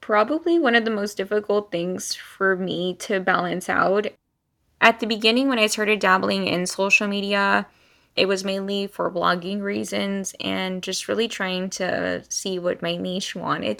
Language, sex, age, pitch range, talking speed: English, female, 10-29, 170-200 Hz, 165 wpm